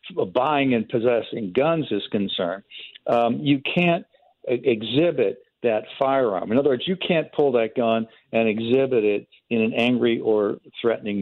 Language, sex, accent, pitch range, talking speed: English, male, American, 110-130 Hz, 155 wpm